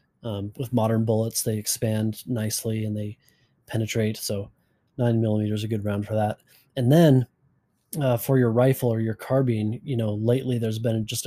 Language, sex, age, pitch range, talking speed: English, male, 20-39, 110-125 Hz, 175 wpm